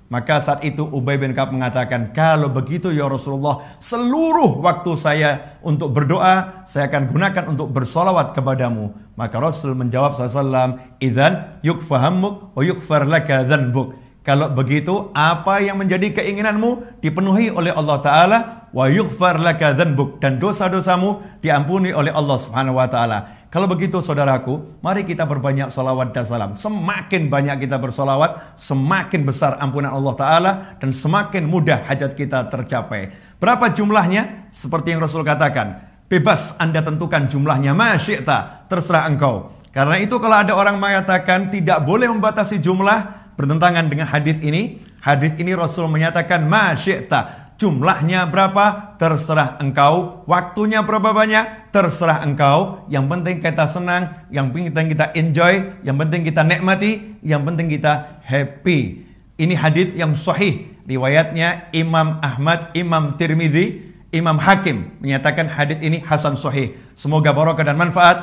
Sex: male